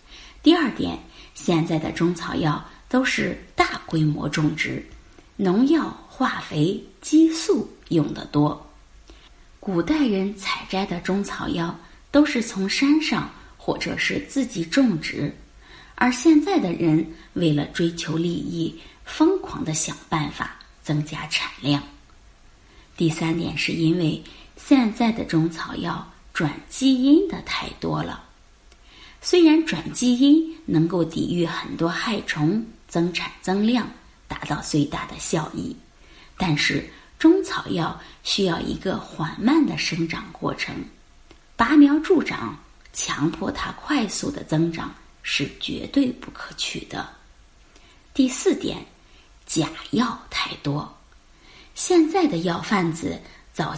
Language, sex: Chinese, female